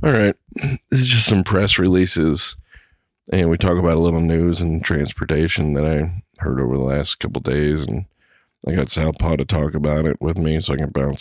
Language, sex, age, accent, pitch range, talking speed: English, male, 40-59, American, 70-85 Hz, 210 wpm